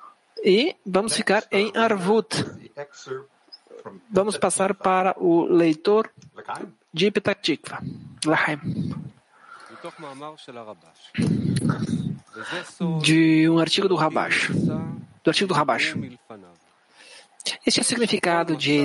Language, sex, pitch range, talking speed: English, male, 150-205 Hz, 85 wpm